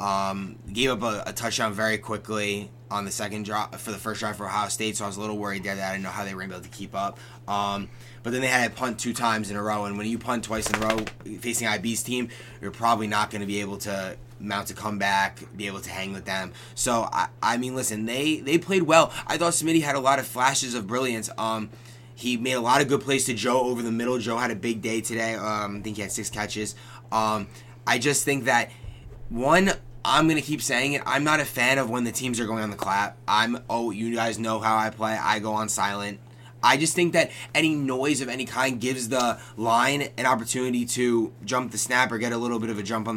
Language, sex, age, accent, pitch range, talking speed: English, male, 20-39, American, 110-130 Hz, 260 wpm